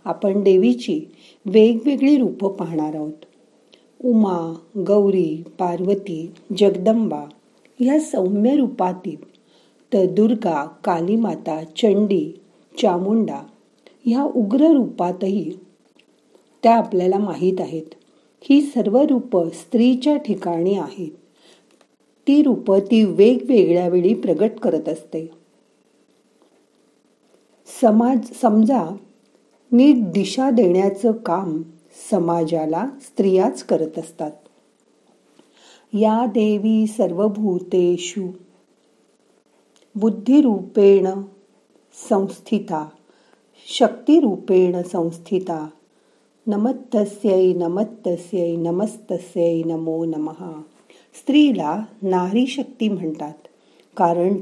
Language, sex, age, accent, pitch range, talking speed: Marathi, female, 50-69, native, 175-230 Hz, 75 wpm